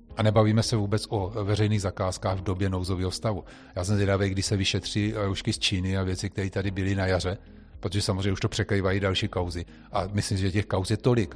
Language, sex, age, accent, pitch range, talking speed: Czech, male, 40-59, native, 95-105 Hz, 215 wpm